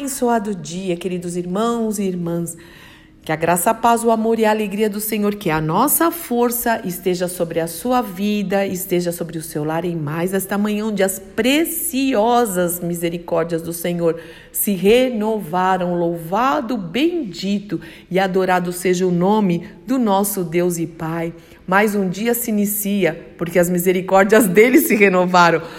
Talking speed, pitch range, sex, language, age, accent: 155 wpm, 180-235 Hz, female, Portuguese, 50-69, Brazilian